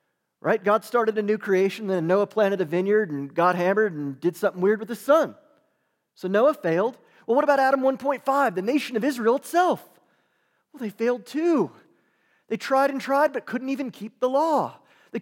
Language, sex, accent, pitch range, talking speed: English, male, American, 185-250 Hz, 200 wpm